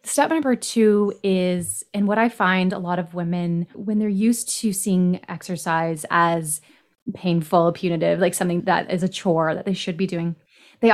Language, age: English, 20-39